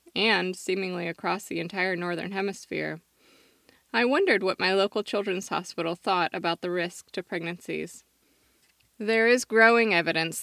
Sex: female